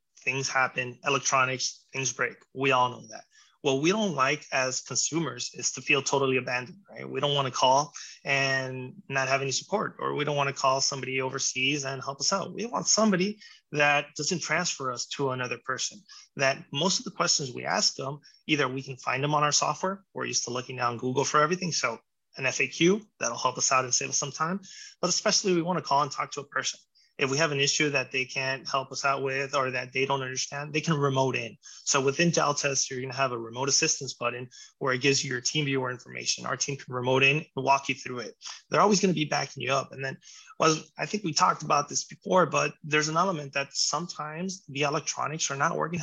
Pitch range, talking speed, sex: 130-165 Hz, 230 wpm, male